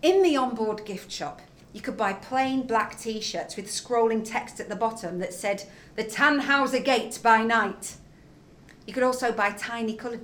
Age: 40-59